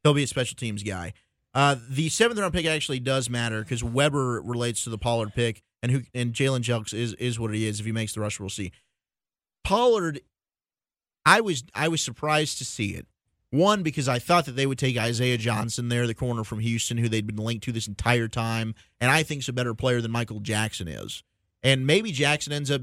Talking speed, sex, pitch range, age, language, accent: 225 wpm, male, 115-135 Hz, 30-49, English, American